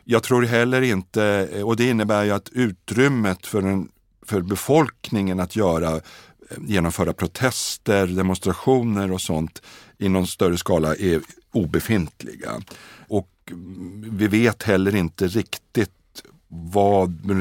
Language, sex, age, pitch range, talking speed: Swedish, male, 50-69, 85-105 Hz, 120 wpm